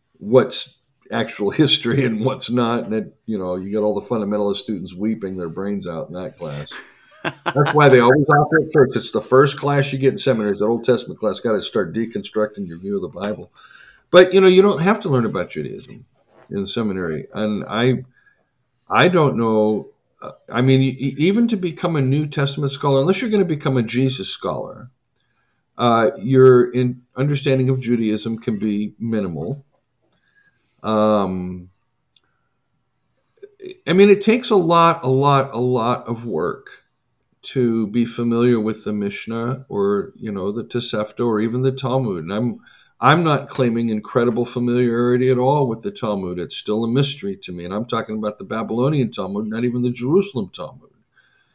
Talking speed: 175 wpm